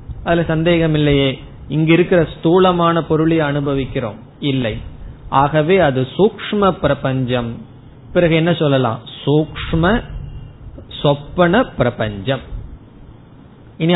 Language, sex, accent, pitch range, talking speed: Tamil, male, native, 130-175 Hz, 50 wpm